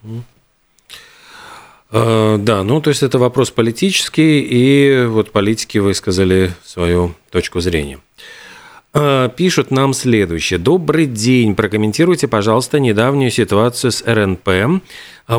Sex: male